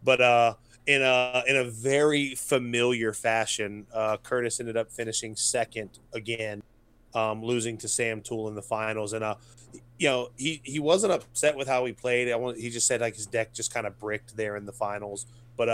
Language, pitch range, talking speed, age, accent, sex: English, 110-120 Hz, 200 wpm, 20-39, American, male